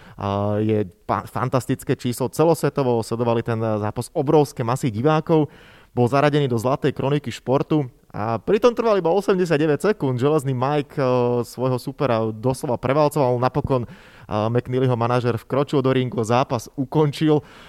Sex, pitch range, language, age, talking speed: male, 115-150 Hz, Slovak, 20-39, 135 wpm